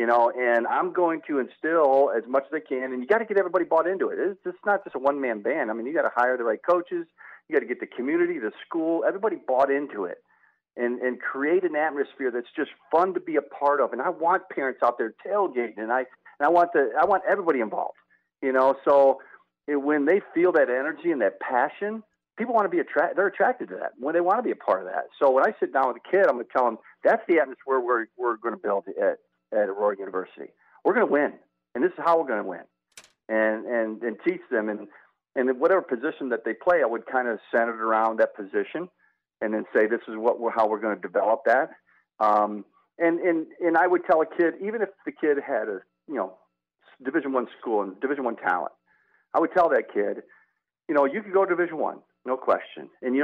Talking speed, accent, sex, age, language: 250 wpm, American, male, 50-69, English